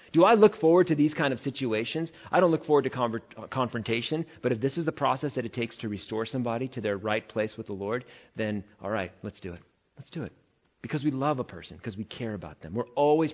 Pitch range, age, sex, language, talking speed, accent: 100-140 Hz, 40-59, male, English, 255 wpm, American